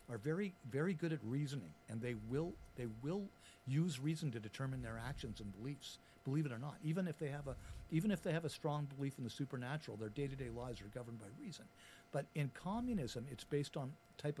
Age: 50-69